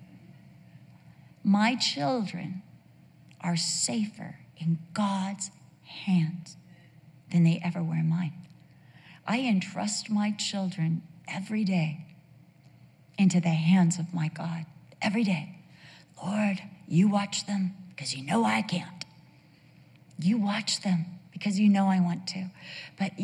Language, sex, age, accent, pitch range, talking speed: English, female, 50-69, American, 170-210 Hz, 120 wpm